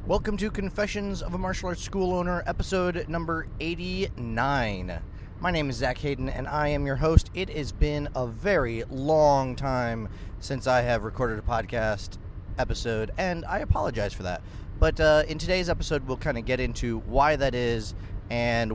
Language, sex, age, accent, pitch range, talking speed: English, male, 30-49, American, 110-150 Hz, 175 wpm